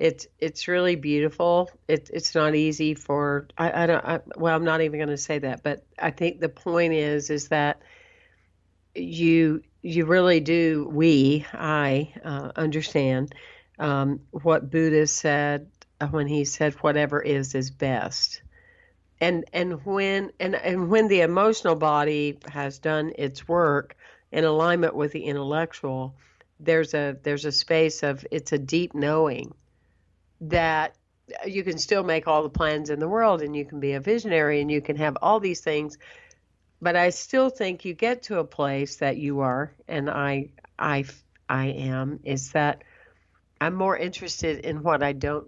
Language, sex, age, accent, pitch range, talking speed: English, female, 50-69, American, 140-170 Hz, 165 wpm